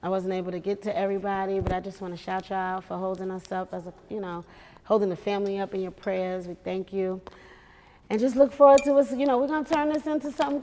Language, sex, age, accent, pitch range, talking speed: English, female, 30-49, American, 190-255 Hz, 260 wpm